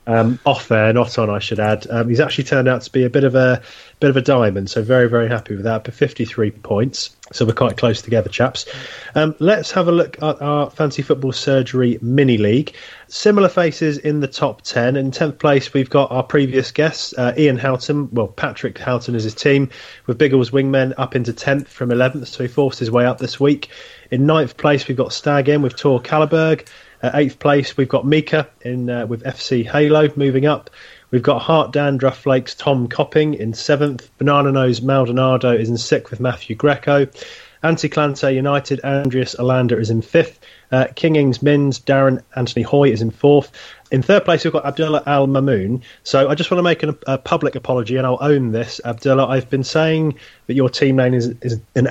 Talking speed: 205 wpm